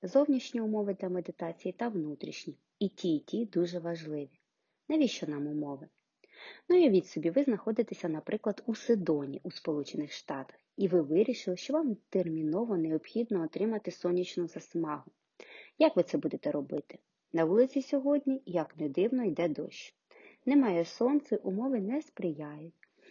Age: 30-49